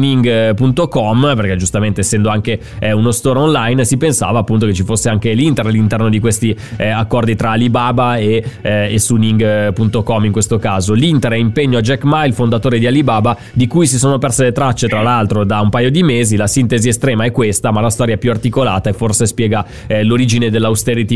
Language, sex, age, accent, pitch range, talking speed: Italian, male, 20-39, native, 105-125 Hz, 205 wpm